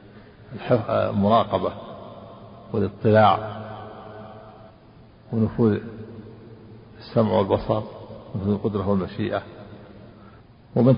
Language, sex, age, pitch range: Arabic, male, 50-69, 105-120 Hz